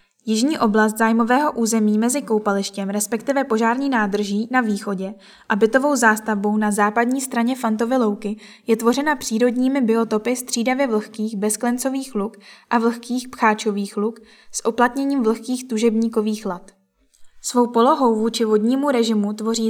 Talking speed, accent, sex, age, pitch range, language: 130 wpm, native, female, 10-29, 210-245 Hz, Czech